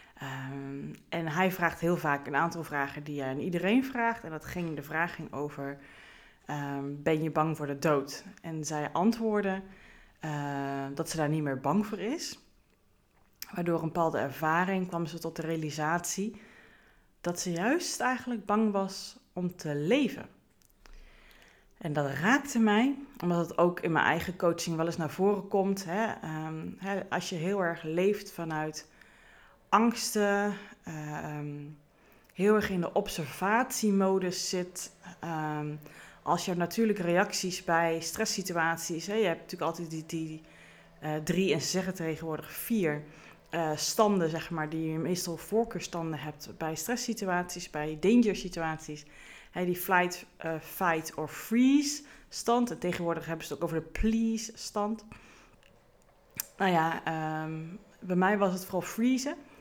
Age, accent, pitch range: 20-39, Dutch, 155-200 Hz